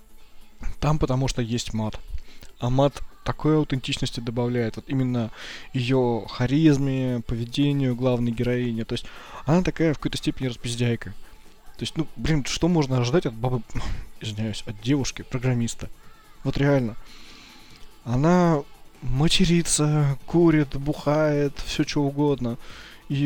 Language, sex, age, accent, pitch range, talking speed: Russian, male, 20-39, native, 115-140 Hz, 125 wpm